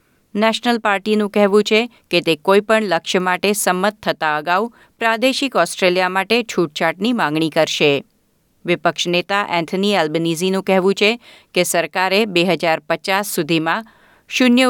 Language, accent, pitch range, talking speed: Gujarati, native, 175-220 Hz, 120 wpm